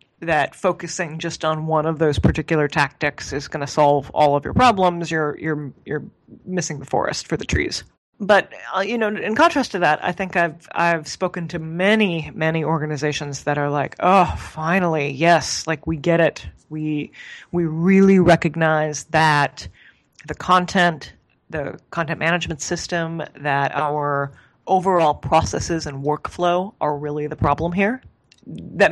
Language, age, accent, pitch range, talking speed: English, 30-49, American, 150-175 Hz, 160 wpm